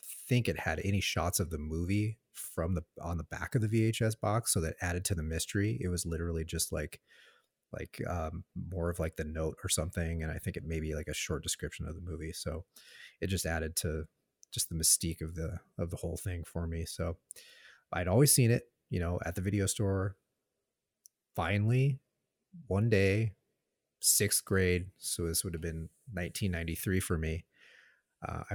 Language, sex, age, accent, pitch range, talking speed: English, male, 30-49, American, 80-100 Hz, 190 wpm